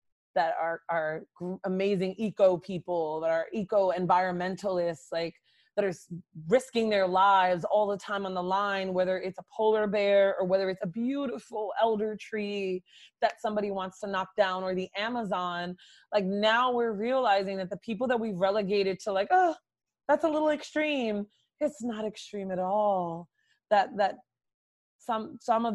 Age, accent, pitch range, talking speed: 20-39, American, 180-220 Hz, 165 wpm